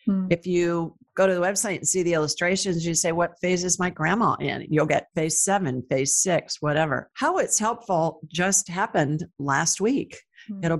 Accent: American